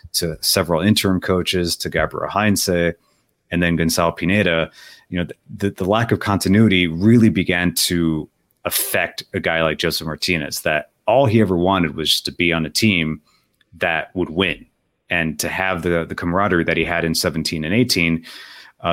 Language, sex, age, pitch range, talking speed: English, male, 30-49, 85-105 Hz, 175 wpm